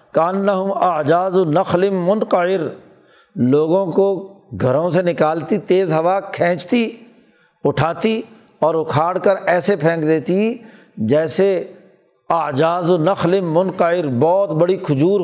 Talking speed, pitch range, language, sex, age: 110 wpm, 155-180 Hz, Urdu, male, 60-79